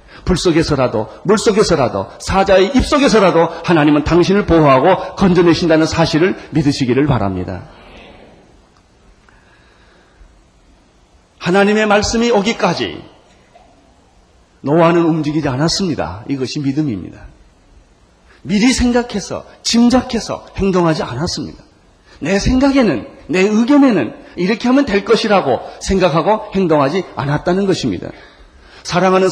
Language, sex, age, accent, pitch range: Korean, male, 40-59, native, 160-215 Hz